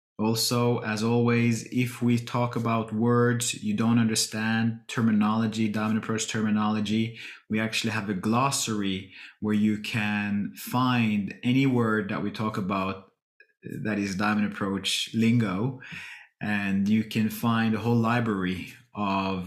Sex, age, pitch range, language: male, 20-39, 105-120 Hz, English